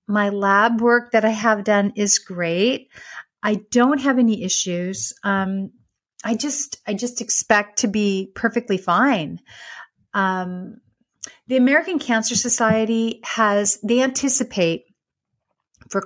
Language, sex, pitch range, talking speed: English, female, 190-230 Hz, 125 wpm